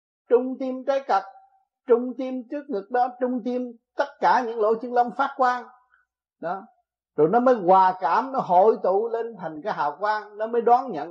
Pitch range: 190-260 Hz